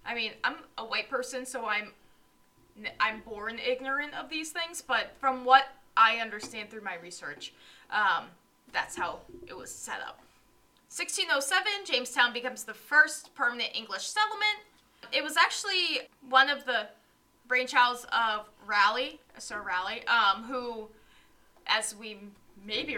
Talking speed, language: 140 wpm, English